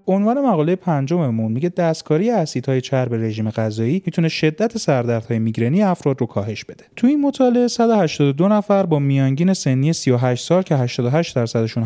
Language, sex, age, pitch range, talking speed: Persian, male, 30-49, 140-205 Hz, 155 wpm